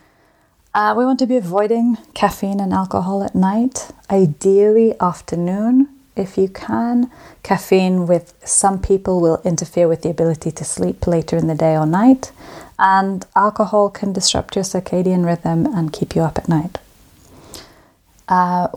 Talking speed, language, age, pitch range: 150 wpm, English, 30-49, 170-205 Hz